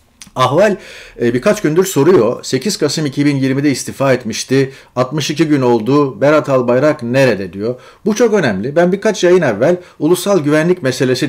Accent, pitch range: native, 120-165 Hz